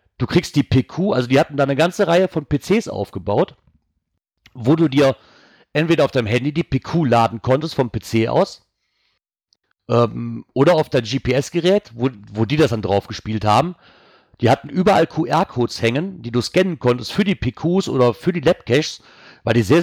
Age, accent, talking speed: 40-59, German, 180 wpm